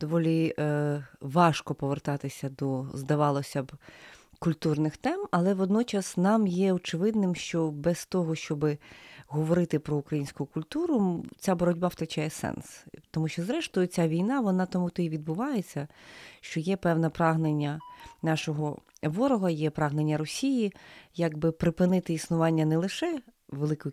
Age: 30-49